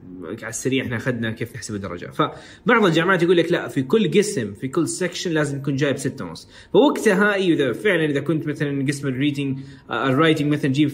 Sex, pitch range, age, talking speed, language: male, 135-180 Hz, 20-39, 190 wpm, Arabic